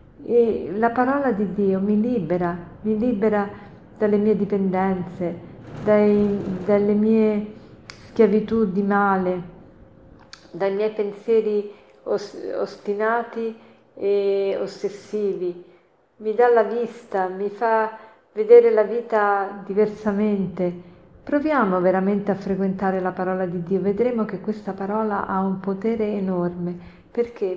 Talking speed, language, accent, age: 105 wpm, Italian, native, 40-59